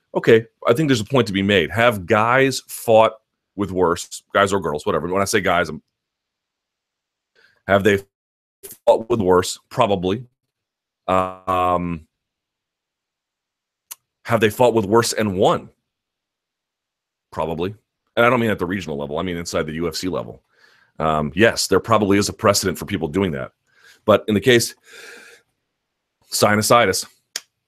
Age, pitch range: 30-49, 85-115 Hz